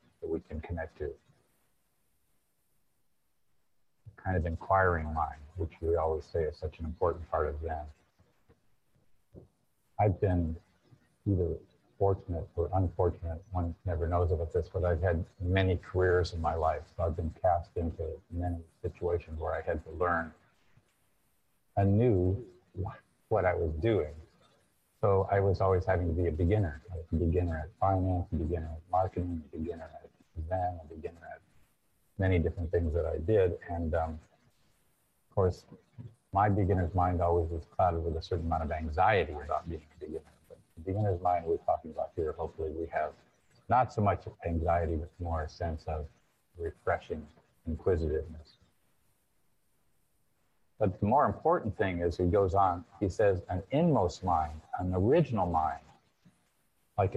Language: English